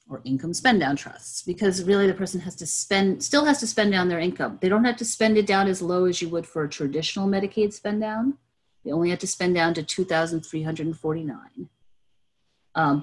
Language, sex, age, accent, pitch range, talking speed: English, female, 30-49, American, 140-185 Hz, 205 wpm